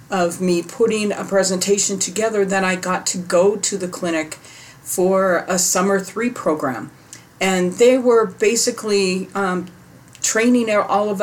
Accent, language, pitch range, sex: American, English, 160-195 Hz, female